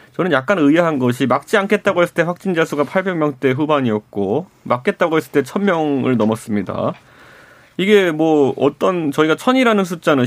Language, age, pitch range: Korean, 30-49, 130-180 Hz